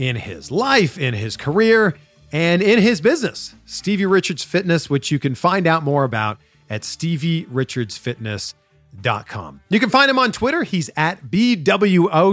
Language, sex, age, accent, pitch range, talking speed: English, male, 40-59, American, 130-200 Hz, 150 wpm